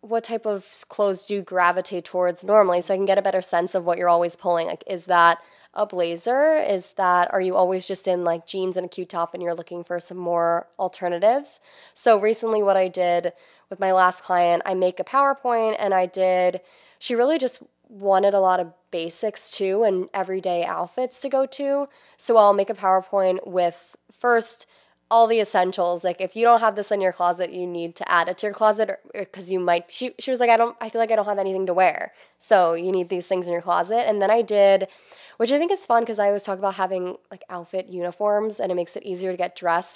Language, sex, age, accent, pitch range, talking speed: English, female, 20-39, American, 180-215 Hz, 235 wpm